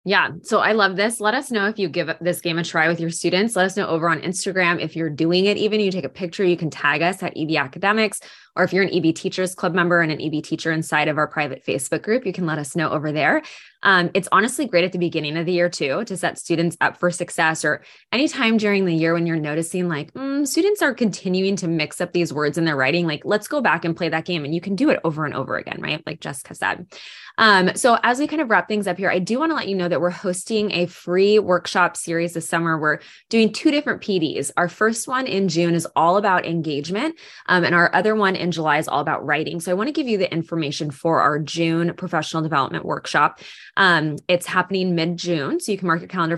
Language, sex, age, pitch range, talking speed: English, female, 20-39, 160-200 Hz, 260 wpm